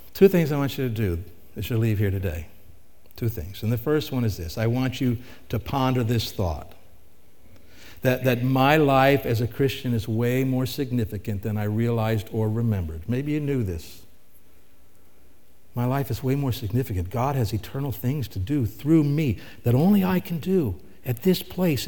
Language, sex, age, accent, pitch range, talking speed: English, male, 60-79, American, 110-145 Hz, 190 wpm